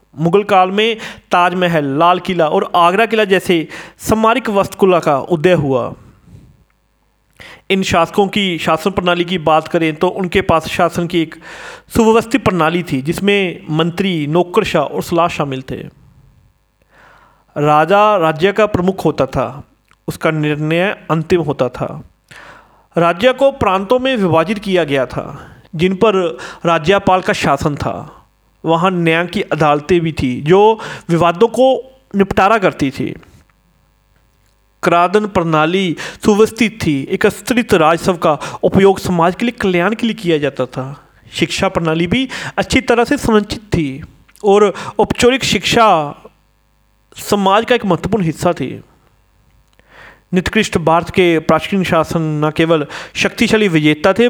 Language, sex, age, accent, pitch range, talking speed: Hindi, male, 40-59, native, 155-200 Hz, 135 wpm